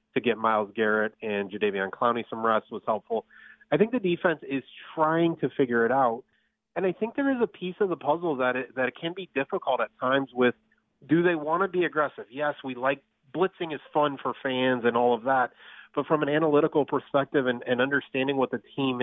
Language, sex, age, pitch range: English, male, 30-49, 115-145 Hz